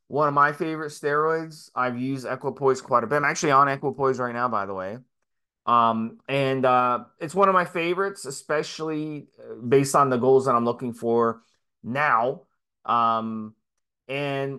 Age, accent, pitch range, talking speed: 20-39, American, 125-155 Hz, 165 wpm